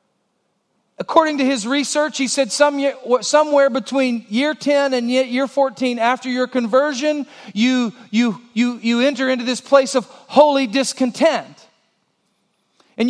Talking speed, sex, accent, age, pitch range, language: 130 wpm, male, American, 40-59, 220-290 Hz, English